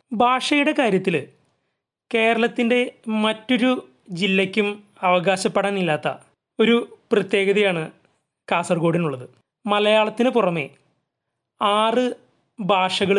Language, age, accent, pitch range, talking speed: Malayalam, 30-49, native, 180-215 Hz, 60 wpm